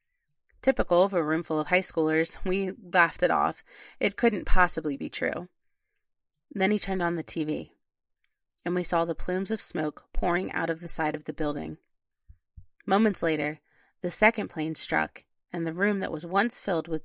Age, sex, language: 30-49, female, English